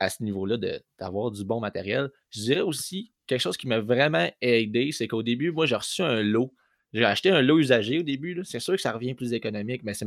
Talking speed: 250 wpm